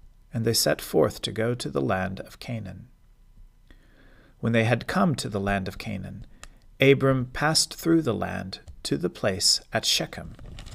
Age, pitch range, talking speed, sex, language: 40-59, 100-130 Hz, 165 wpm, male, English